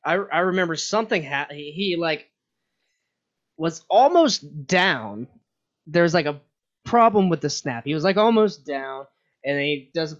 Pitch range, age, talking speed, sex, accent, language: 130-160 Hz, 20-39, 155 wpm, male, American, English